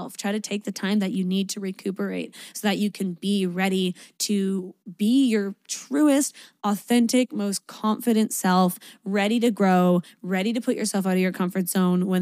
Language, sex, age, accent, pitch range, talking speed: English, female, 20-39, American, 195-225 Hz, 180 wpm